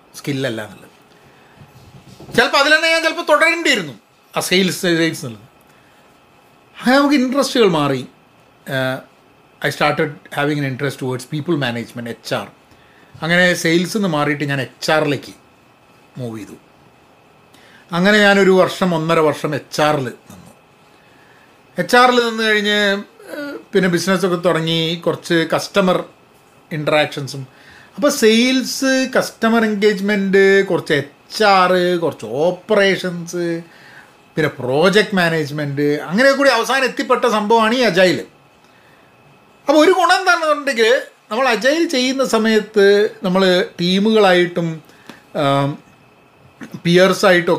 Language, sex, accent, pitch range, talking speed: Malayalam, male, native, 150-225 Hz, 105 wpm